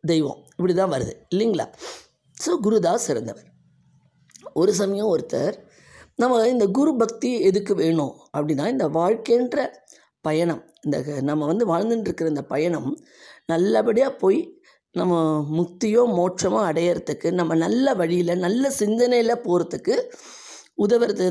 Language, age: Tamil, 20-39